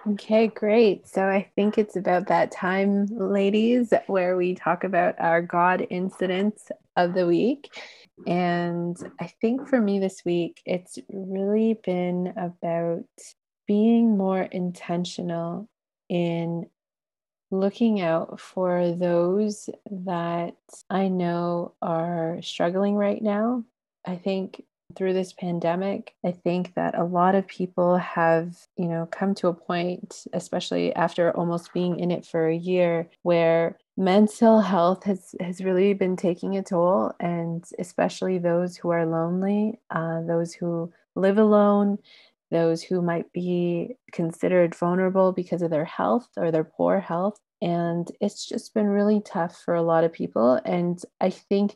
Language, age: English, 20-39